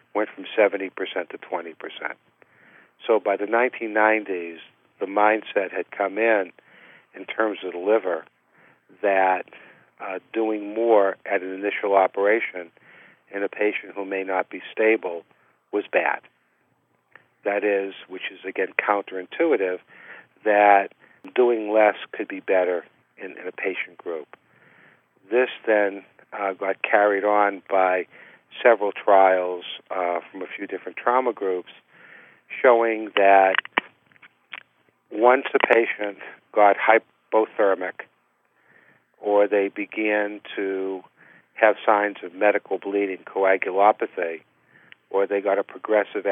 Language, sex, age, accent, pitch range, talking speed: English, male, 50-69, American, 95-105 Hz, 120 wpm